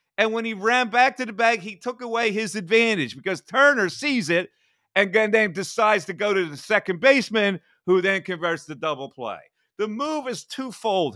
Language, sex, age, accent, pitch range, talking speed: English, male, 40-59, American, 185-245 Hz, 195 wpm